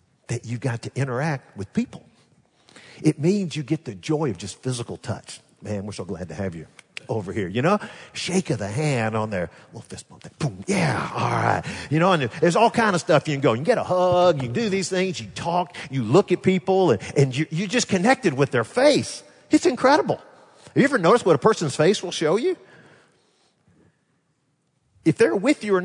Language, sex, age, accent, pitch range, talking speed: English, male, 50-69, American, 145-230 Hz, 220 wpm